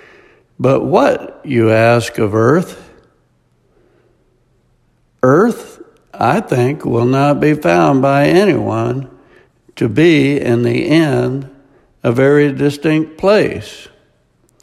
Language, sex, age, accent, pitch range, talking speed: English, male, 60-79, American, 125-160 Hz, 100 wpm